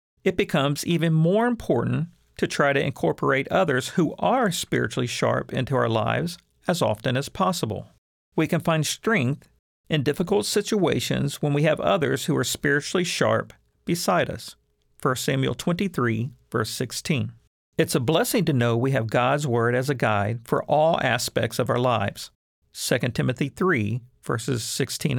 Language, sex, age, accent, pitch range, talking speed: English, male, 50-69, American, 120-165 Hz, 155 wpm